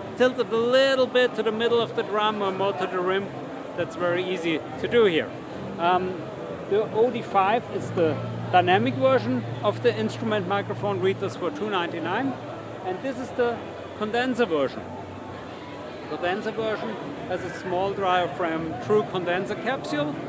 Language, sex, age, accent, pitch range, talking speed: English, male, 50-69, German, 180-225 Hz, 155 wpm